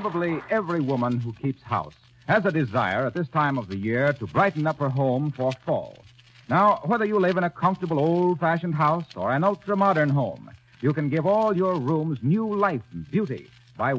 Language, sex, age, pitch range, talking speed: English, male, 60-79, 125-190 Hz, 195 wpm